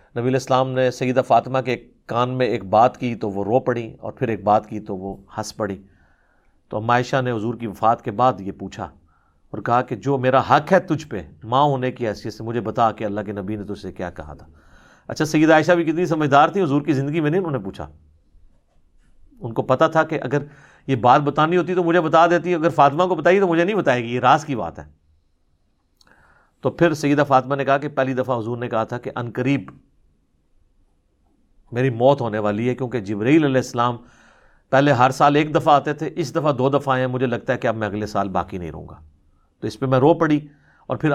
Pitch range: 105-150 Hz